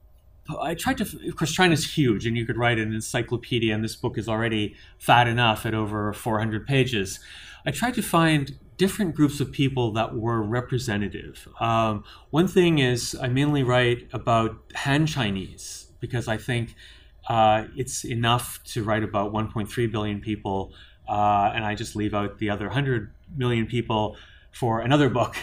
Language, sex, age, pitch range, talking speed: English, male, 30-49, 105-130 Hz, 170 wpm